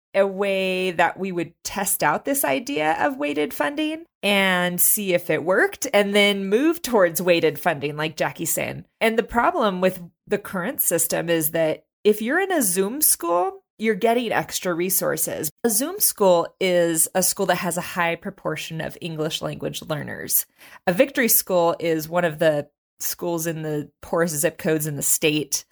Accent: American